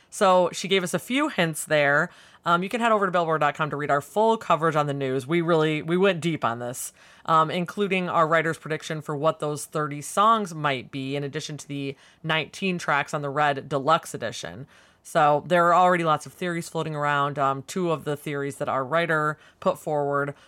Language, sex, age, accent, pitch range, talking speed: English, female, 30-49, American, 140-170 Hz, 210 wpm